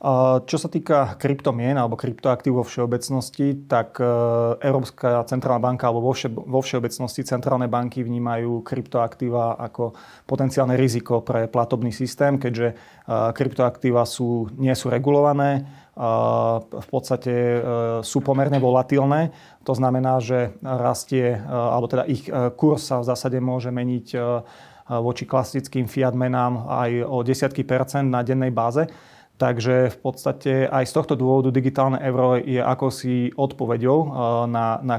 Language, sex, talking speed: Slovak, male, 125 wpm